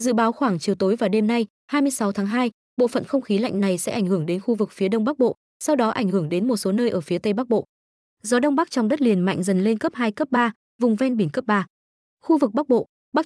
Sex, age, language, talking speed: female, 20-39, Vietnamese, 285 wpm